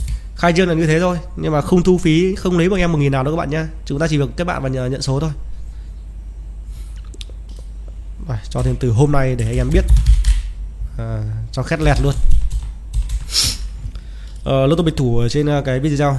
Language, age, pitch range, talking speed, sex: Vietnamese, 20-39, 115-150 Hz, 205 wpm, male